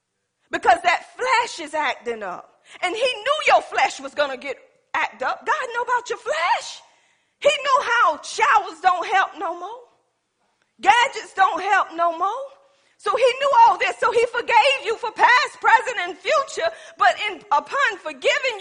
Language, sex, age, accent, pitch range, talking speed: English, female, 40-59, American, 310-465 Hz, 170 wpm